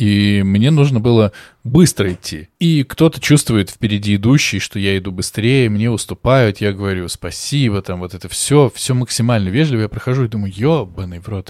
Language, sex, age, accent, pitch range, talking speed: Russian, male, 20-39, native, 100-140 Hz, 175 wpm